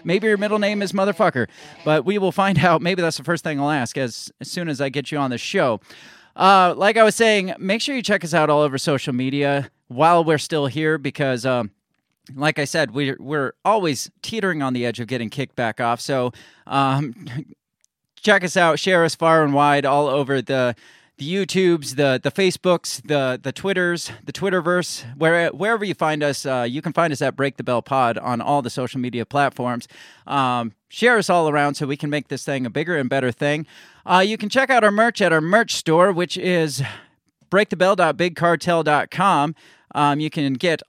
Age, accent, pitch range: 30-49, American, 135-175 Hz